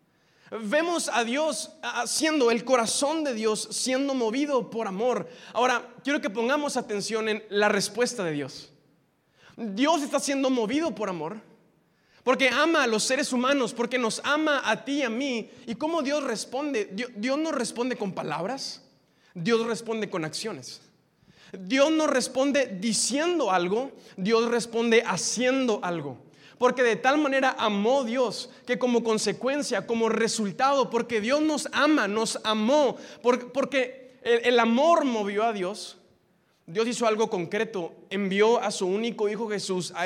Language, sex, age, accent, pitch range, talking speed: Spanish, male, 20-39, Mexican, 205-255 Hz, 145 wpm